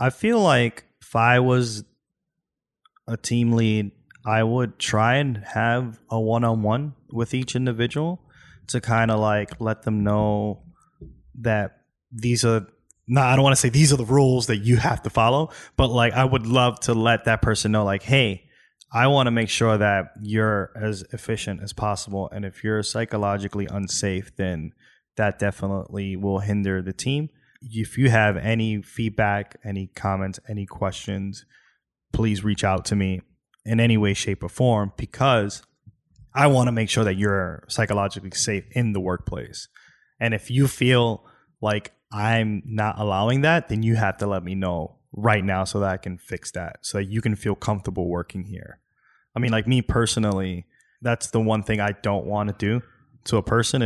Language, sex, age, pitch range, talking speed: English, male, 20-39, 100-120 Hz, 180 wpm